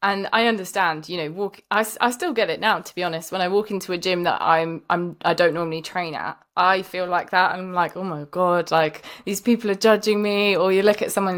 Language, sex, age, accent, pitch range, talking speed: English, female, 20-39, British, 170-200 Hz, 260 wpm